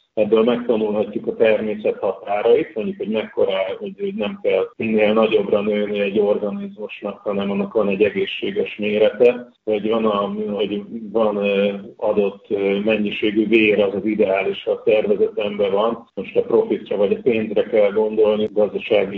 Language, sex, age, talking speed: Hungarian, male, 40-59, 145 wpm